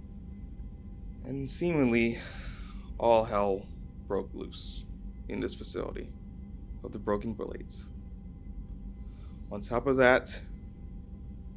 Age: 20-39